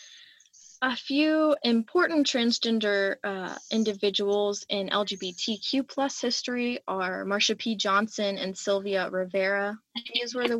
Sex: female